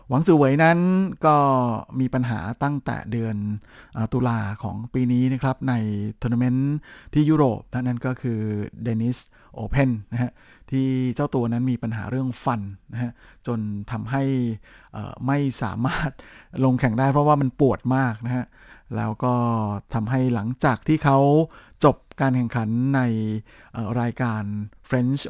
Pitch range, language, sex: 115-135 Hz, Thai, male